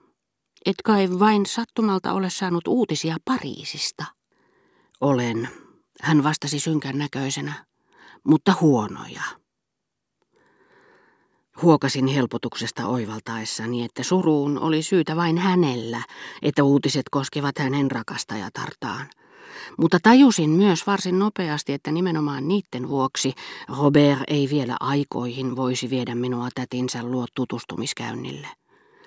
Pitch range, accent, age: 125-170 Hz, native, 40-59